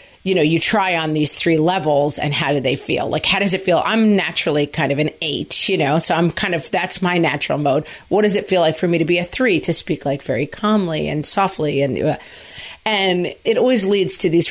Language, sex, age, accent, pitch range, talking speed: English, female, 40-59, American, 160-205 Hz, 250 wpm